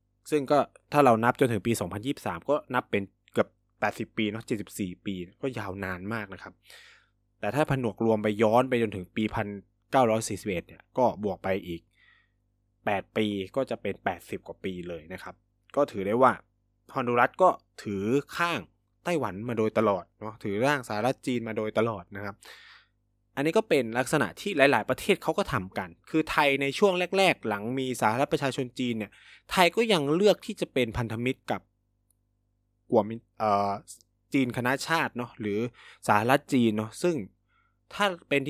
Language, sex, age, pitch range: Thai, male, 20-39, 100-130 Hz